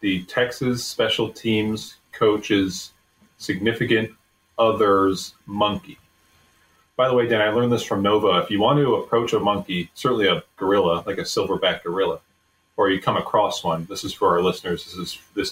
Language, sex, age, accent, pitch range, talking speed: English, male, 30-49, American, 90-110 Hz, 170 wpm